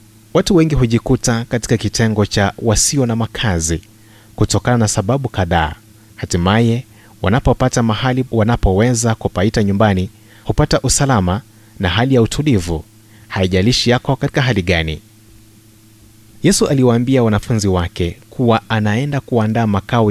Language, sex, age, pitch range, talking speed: Swahili, male, 30-49, 105-120 Hz, 115 wpm